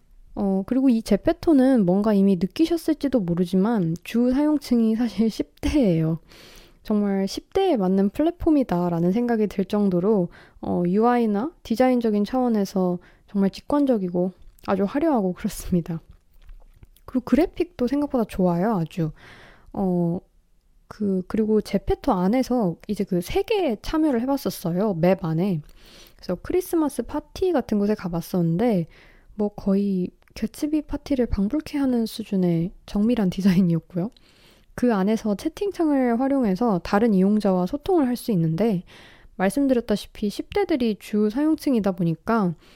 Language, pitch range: Korean, 185-260 Hz